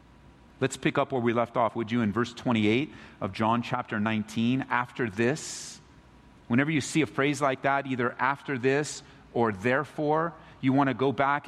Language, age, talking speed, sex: English, 40-59, 185 wpm, male